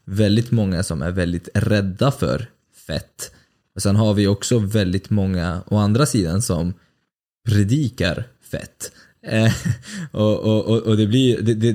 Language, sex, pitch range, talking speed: Swedish, male, 95-110 Hz, 150 wpm